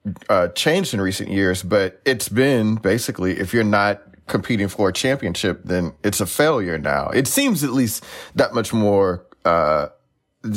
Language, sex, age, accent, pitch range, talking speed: English, male, 30-49, American, 95-130 Hz, 165 wpm